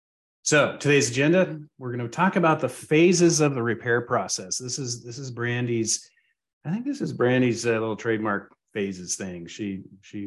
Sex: male